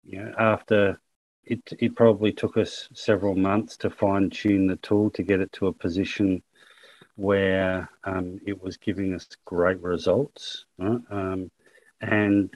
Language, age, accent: English, 40-59, Australian